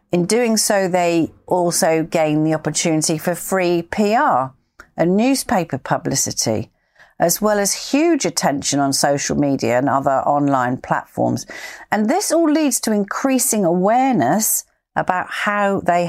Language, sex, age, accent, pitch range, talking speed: English, female, 40-59, British, 135-190 Hz, 135 wpm